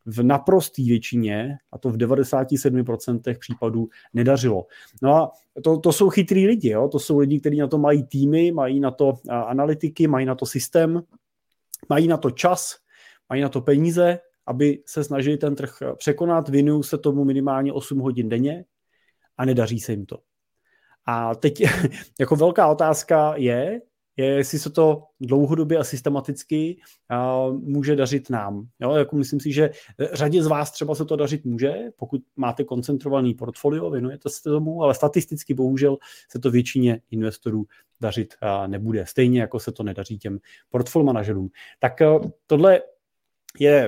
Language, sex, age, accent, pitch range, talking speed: Czech, male, 30-49, native, 125-155 Hz, 155 wpm